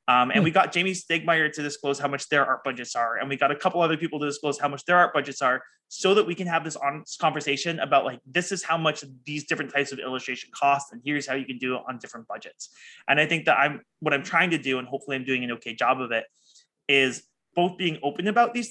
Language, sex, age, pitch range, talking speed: English, male, 20-39, 130-165 Hz, 270 wpm